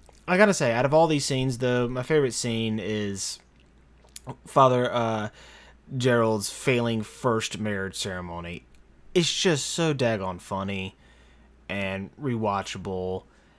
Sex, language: male, English